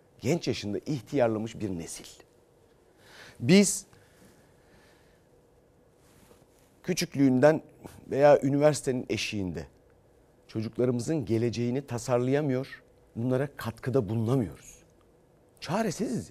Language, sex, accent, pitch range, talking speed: Turkish, male, native, 115-150 Hz, 65 wpm